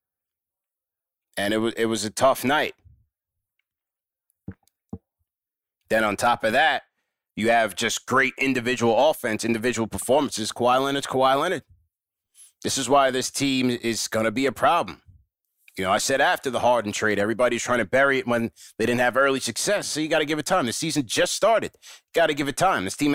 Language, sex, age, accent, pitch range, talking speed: English, male, 30-49, American, 120-140 Hz, 190 wpm